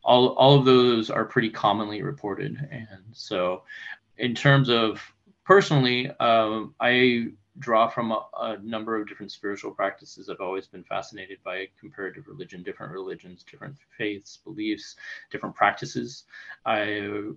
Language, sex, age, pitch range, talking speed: English, male, 30-49, 105-125 Hz, 140 wpm